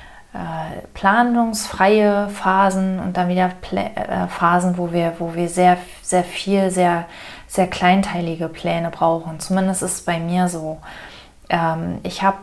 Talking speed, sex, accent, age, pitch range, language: 140 wpm, female, German, 30-49, 170-195 Hz, German